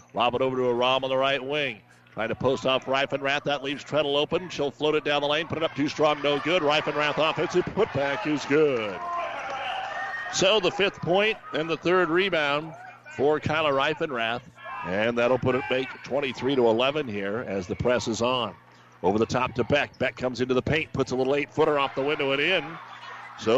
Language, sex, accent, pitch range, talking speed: English, male, American, 125-150 Hz, 210 wpm